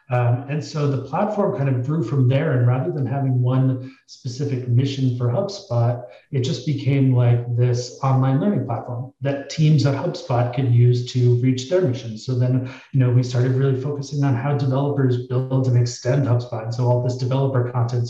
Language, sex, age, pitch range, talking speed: English, male, 30-49, 125-135 Hz, 190 wpm